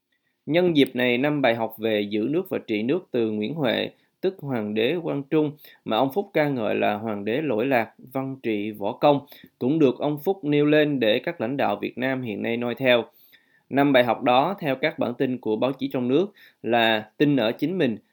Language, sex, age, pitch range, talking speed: Vietnamese, male, 20-39, 115-145 Hz, 225 wpm